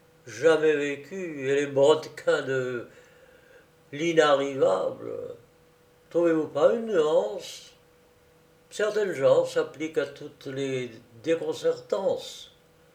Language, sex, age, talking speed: French, male, 60-79, 85 wpm